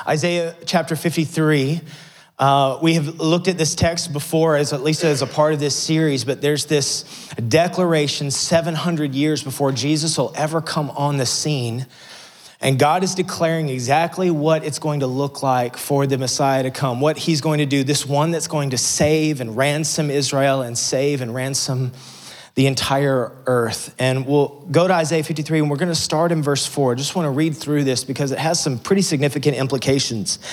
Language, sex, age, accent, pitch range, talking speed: English, male, 30-49, American, 135-165 Hz, 195 wpm